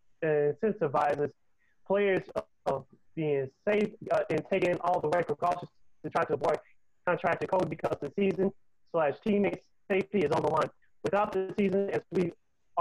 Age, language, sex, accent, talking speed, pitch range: 30-49, English, male, American, 180 wpm, 155-185 Hz